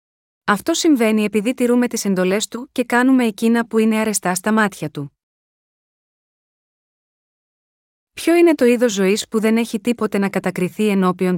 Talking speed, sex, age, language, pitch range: 150 wpm, female, 30-49, Greek, 200-245 Hz